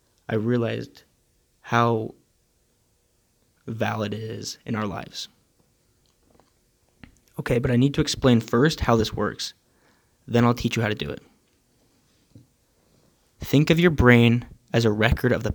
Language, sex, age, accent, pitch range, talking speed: English, male, 20-39, American, 110-130 Hz, 140 wpm